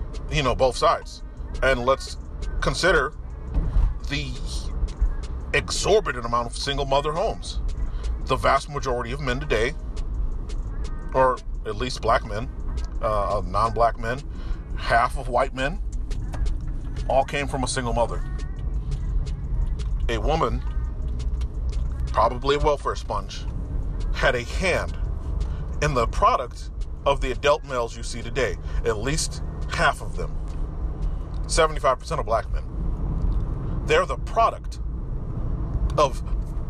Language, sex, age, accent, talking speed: English, male, 40-59, American, 115 wpm